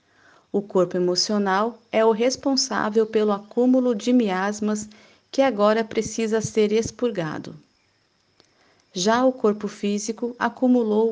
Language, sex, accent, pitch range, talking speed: Portuguese, female, Brazilian, 185-230 Hz, 110 wpm